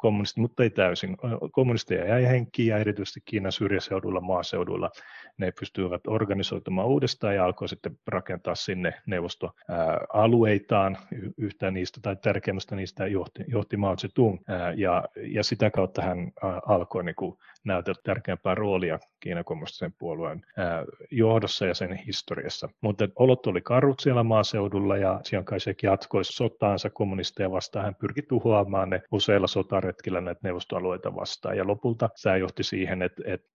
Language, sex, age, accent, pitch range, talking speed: Finnish, male, 30-49, native, 95-115 Hz, 140 wpm